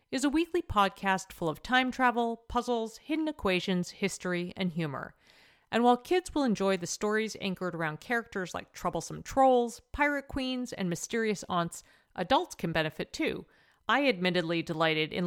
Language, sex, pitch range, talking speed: English, female, 170-245 Hz, 155 wpm